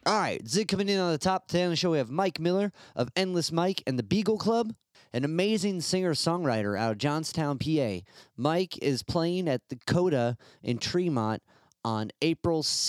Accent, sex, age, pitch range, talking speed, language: American, male, 30-49, 115-155 Hz, 175 wpm, English